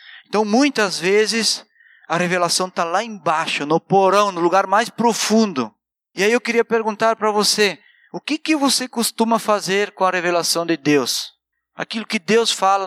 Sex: male